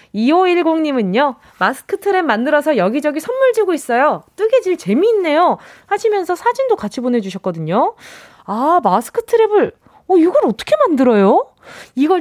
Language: Korean